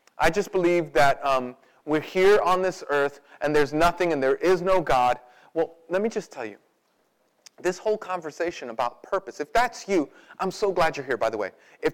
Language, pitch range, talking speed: English, 145-215 Hz, 205 wpm